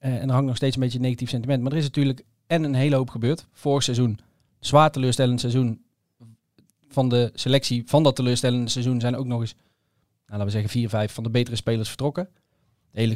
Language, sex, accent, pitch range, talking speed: Dutch, male, Dutch, 120-145 Hz, 225 wpm